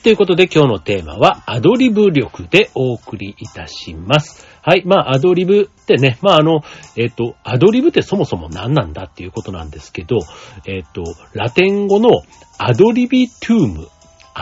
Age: 40-59